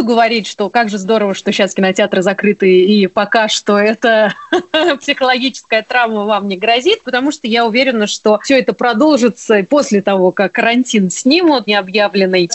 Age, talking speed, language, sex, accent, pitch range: 30-49, 160 wpm, Russian, female, native, 205-255 Hz